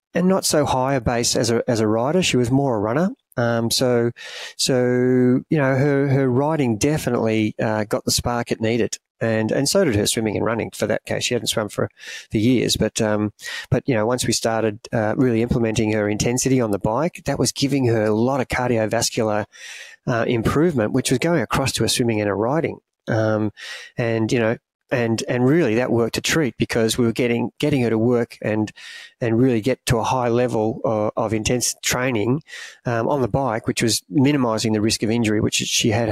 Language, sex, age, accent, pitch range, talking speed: English, male, 30-49, Australian, 110-125 Hz, 215 wpm